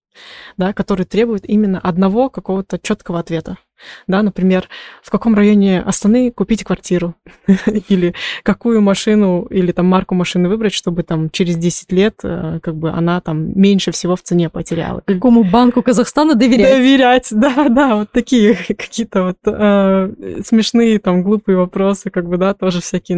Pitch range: 180-215 Hz